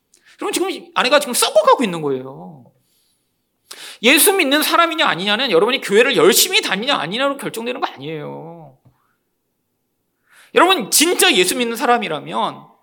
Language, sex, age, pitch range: Korean, male, 40-59, 235-355 Hz